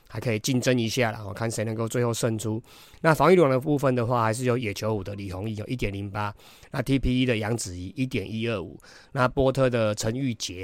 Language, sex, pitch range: Chinese, male, 110-130 Hz